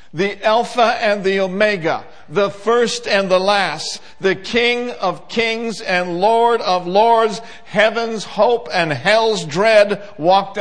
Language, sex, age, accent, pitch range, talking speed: English, male, 60-79, American, 190-225 Hz, 135 wpm